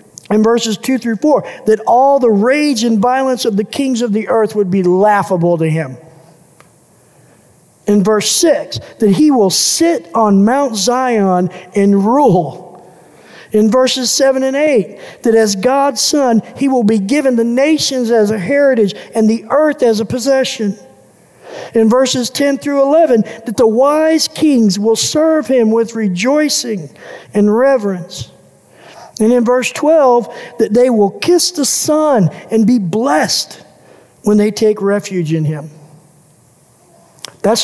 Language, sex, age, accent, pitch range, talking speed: English, male, 50-69, American, 205-265 Hz, 150 wpm